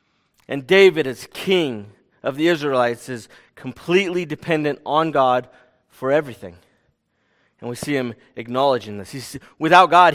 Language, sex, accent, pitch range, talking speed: English, male, American, 125-170 Hz, 130 wpm